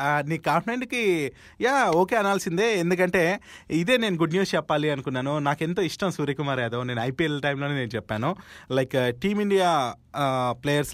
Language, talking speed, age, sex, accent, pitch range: Telugu, 135 wpm, 20-39, male, native, 130-180 Hz